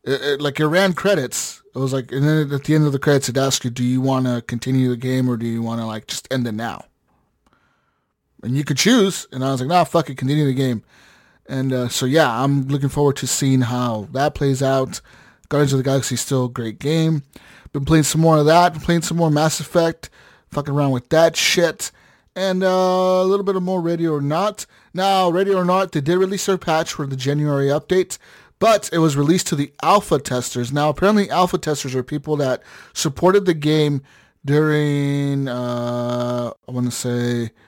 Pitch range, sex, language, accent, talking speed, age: 120-155 Hz, male, English, American, 220 wpm, 30-49